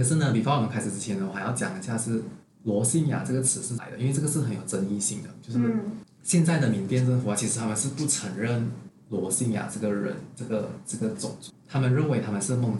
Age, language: 20-39, Chinese